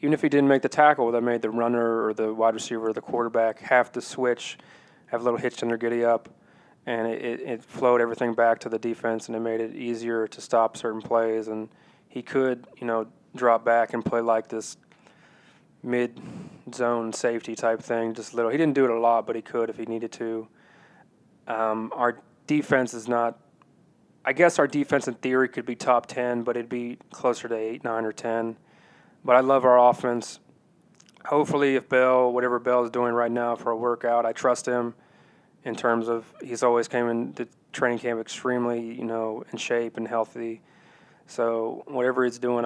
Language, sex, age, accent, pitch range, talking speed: English, male, 20-39, American, 115-125 Hz, 205 wpm